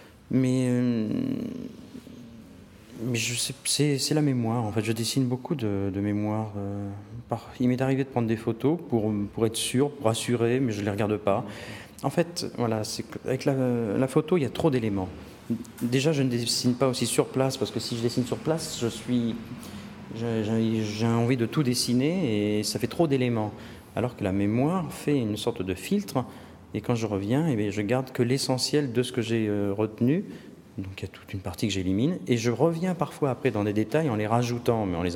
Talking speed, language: 200 wpm, French